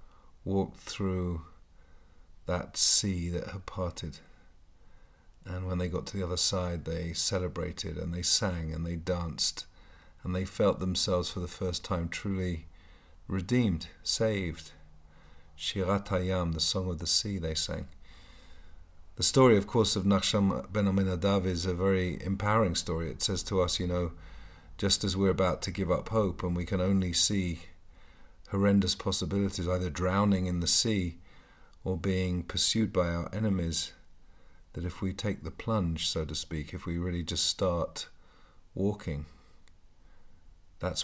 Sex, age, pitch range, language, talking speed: male, 40-59, 80-95 Hz, English, 155 wpm